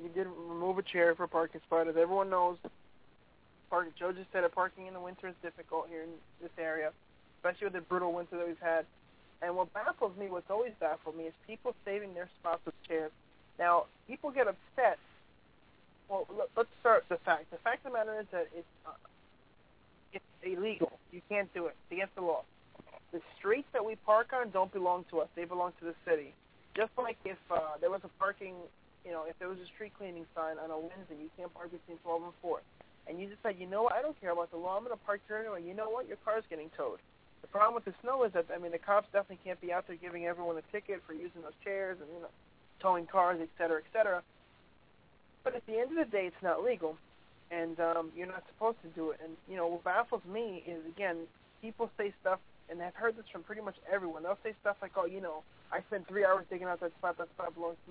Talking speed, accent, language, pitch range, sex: 240 wpm, American, English, 170-205 Hz, male